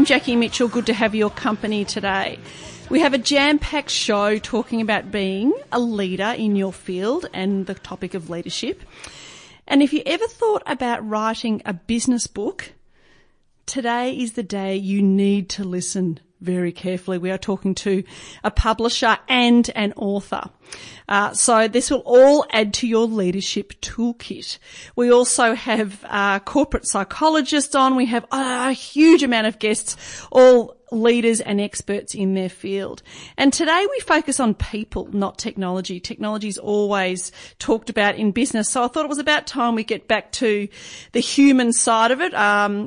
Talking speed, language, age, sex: 165 wpm, English, 40-59, female